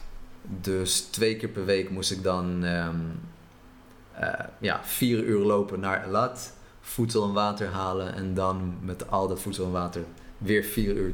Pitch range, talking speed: 95-110 Hz, 165 wpm